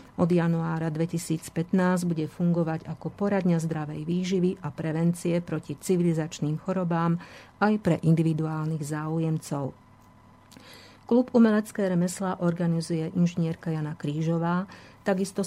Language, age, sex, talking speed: Slovak, 50-69, female, 100 wpm